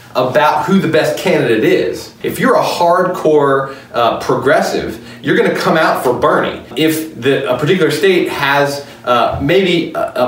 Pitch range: 140-180 Hz